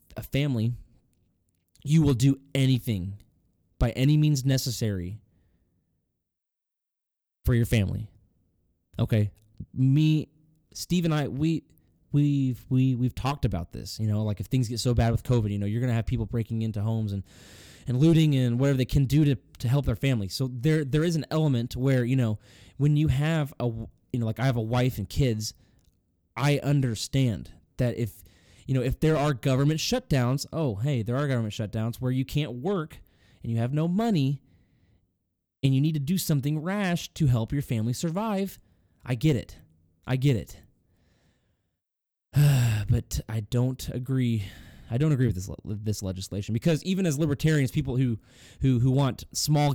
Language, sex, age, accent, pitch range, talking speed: English, male, 20-39, American, 105-140 Hz, 175 wpm